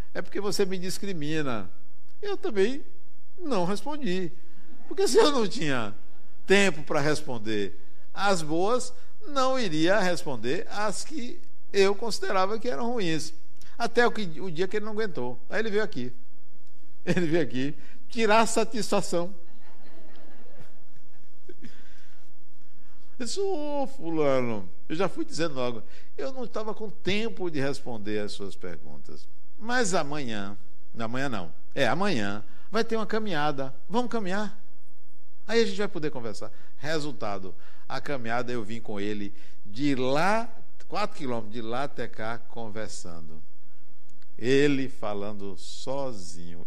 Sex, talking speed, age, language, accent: male, 135 wpm, 60-79, Portuguese, Brazilian